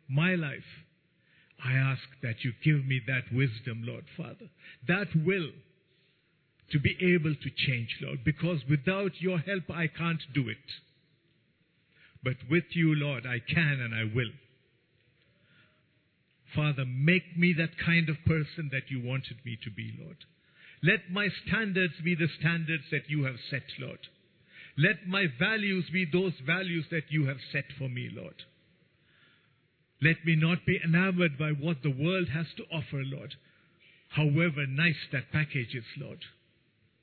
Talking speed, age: 150 wpm, 50-69